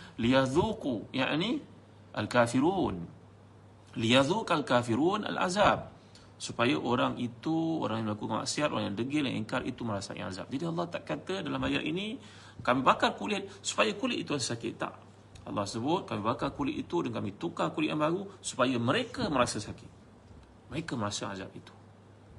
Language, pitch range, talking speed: Malay, 100-125 Hz, 155 wpm